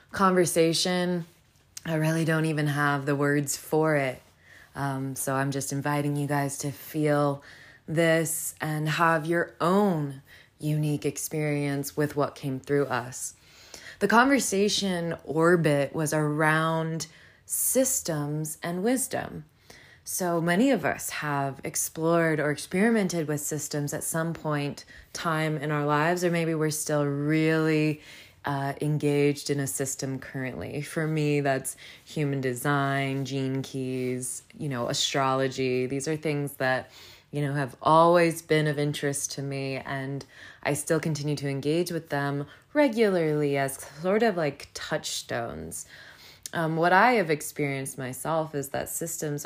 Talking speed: 135 wpm